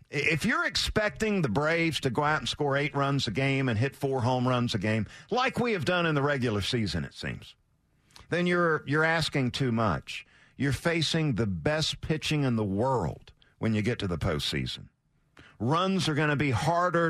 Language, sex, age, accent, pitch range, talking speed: English, male, 50-69, American, 115-160 Hz, 200 wpm